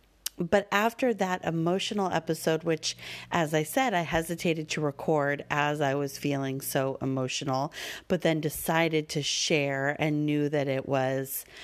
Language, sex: English, female